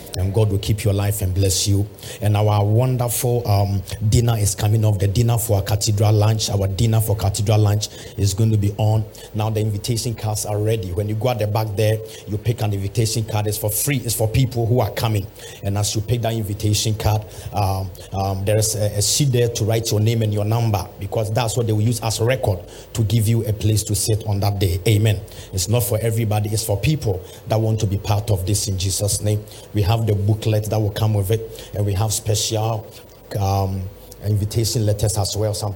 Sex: male